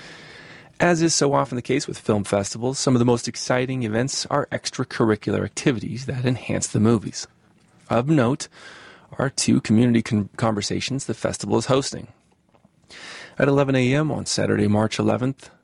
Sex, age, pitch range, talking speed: male, 30-49, 105-130 Hz, 150 wpm